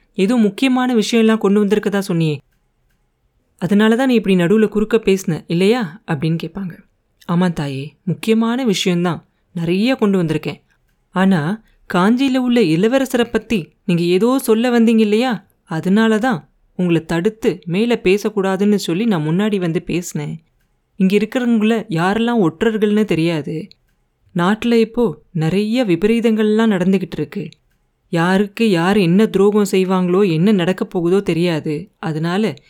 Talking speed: 120 wpm